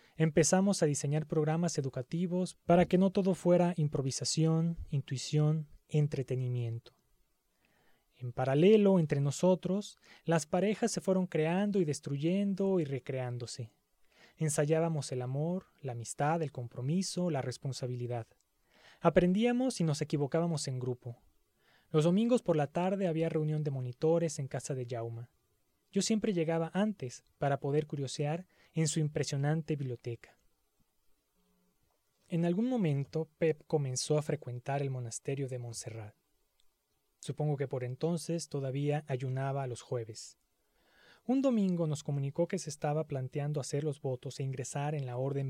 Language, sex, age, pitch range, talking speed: Spanish, male, 30-49, 130-170 Hz, 135 wpm